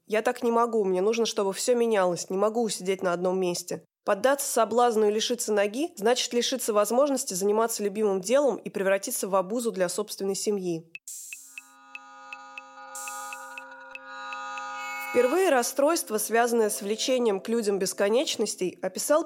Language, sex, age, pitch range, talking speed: Russian, female, 20-39, 195-240 Hz, 130 wpm